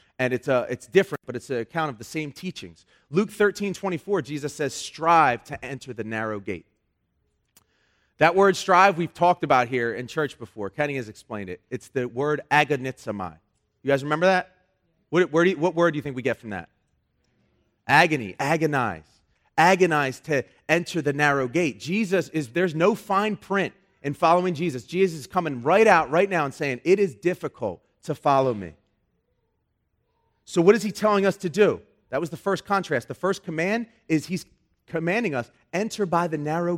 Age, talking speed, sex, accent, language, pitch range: 30-49, 190 wpm, male, American, English, 125-185 Hz